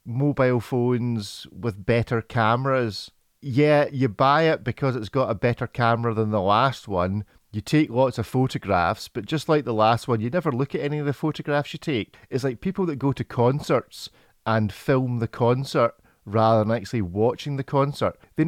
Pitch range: 110-135 Hz